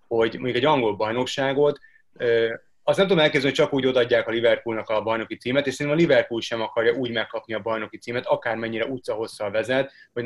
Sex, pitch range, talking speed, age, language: male, 115-140 Hz, 200 wpm, 30-49, Hungarian